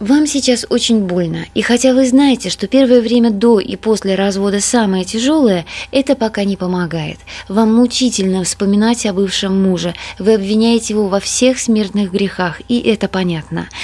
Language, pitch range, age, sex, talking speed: Russian, 190-240 Hz, 20-39, female, 160 wpm